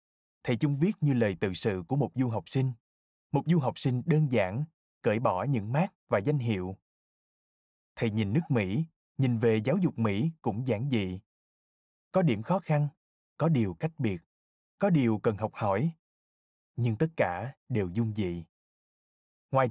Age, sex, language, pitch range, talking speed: 20-39, male, Vietnamese, 110-155 Hz, 175 wpm